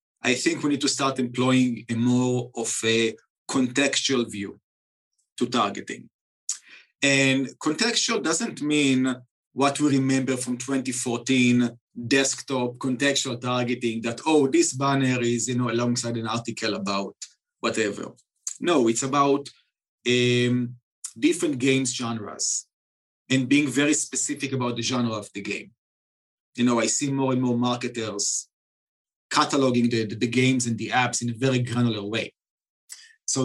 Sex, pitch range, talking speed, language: male, 115-135 Hz, 140 wpm, English